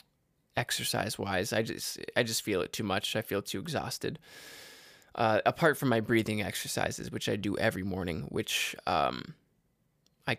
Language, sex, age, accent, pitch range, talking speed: English, male, 20-39, American, 115-150 Hz, 160 wpm